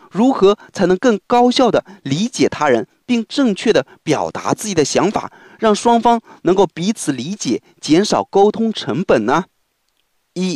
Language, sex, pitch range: Chinese, male, 185-250 Hz